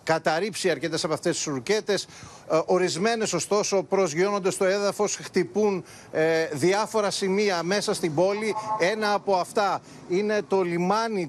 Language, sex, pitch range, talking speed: Greek, male, 160-200 Hz, 120 wpm